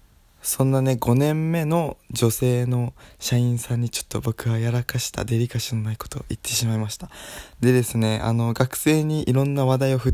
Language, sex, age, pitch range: Japanese, male, 20-39, 110-140 Hz